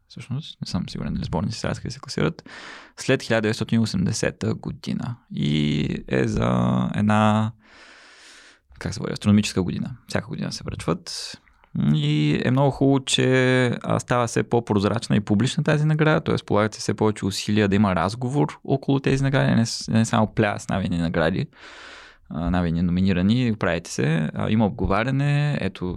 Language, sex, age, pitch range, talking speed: Bulgarian, male, 20-39, 95-120 Hz, 145 wpm